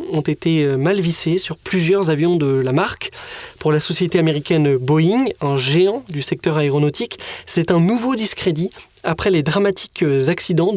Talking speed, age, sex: 155 wpm, 20-39, male